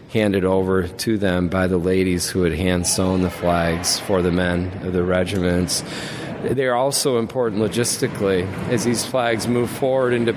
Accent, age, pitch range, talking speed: American, 40-59, 105-125 Hz, 170 wpm